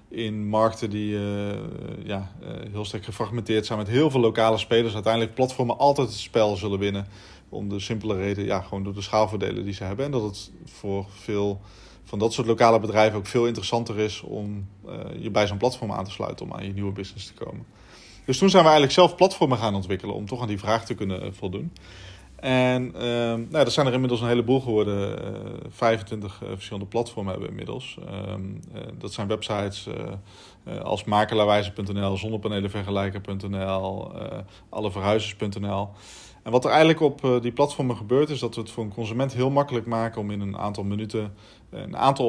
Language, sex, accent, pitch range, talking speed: Dutch, male, Dutch, 100-115 Hz, 195 wpm